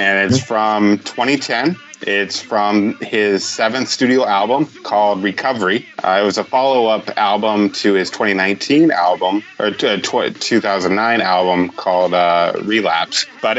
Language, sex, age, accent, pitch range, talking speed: English, male, 20-39, American, 95-115 Hz, 140 wpm